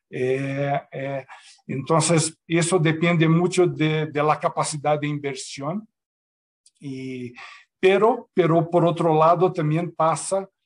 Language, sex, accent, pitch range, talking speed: Spanish, male, Brazilian, 145-170 Hz, 115 wpm